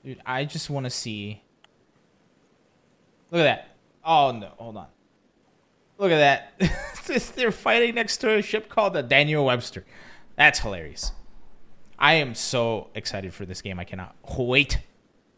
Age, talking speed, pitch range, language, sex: 20-39, 150 wpm, 115-160 Hz, English, male